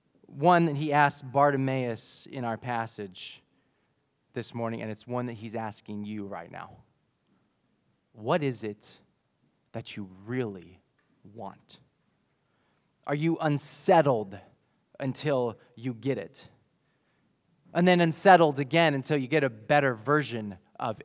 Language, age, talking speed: English, 20-39, 125 wpm